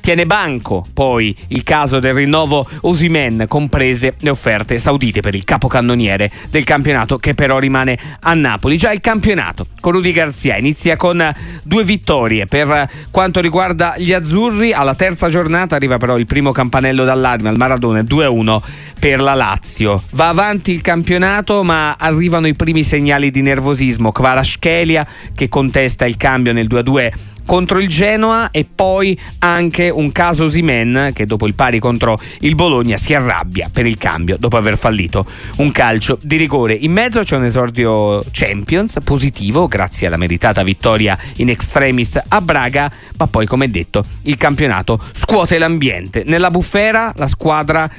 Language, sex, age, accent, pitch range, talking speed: Italian, male, 30-49, native, 120-165 Hz, 160 wpm